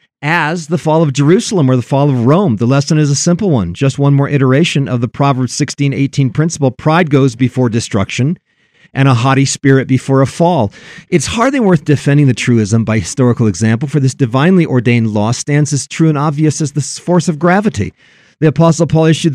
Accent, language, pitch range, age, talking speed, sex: American, English, 130-175 Hz, 50-69, 200 wpm, male